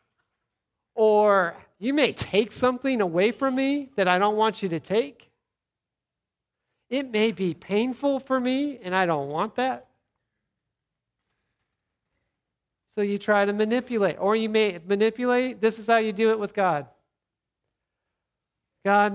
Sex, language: male, English